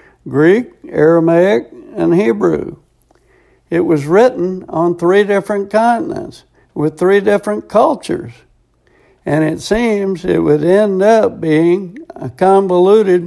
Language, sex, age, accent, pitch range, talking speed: English, male, 60-79, American, 140-190 Hz, 115 wpm